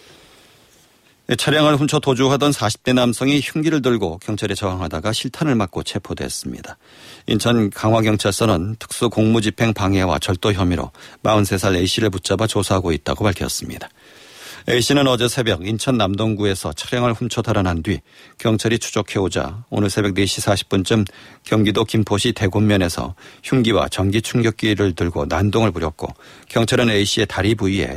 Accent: native